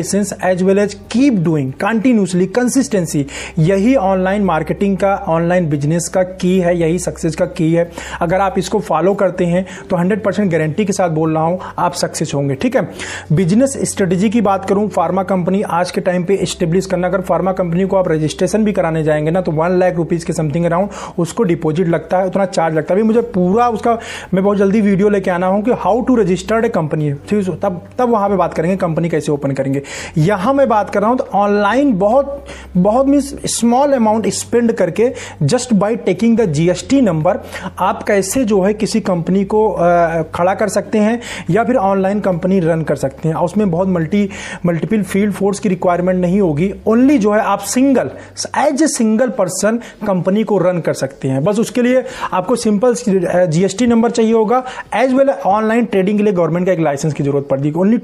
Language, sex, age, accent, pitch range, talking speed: Hindi, male, 30-49, native, 175-220 Hz, 175 wpm